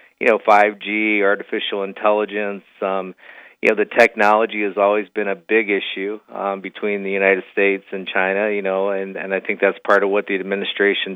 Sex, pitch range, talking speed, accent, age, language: male, 100-110 Hz, 190 wpm, American, 40-59, English